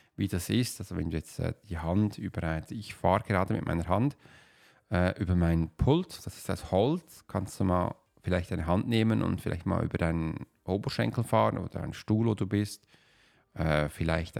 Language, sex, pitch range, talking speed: German, male, 90-110 Hz, 200 wpm